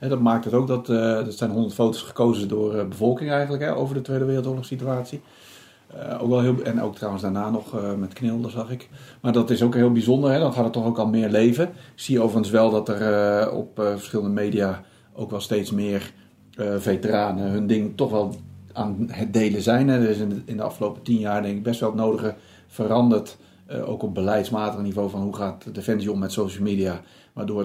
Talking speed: 230 wpm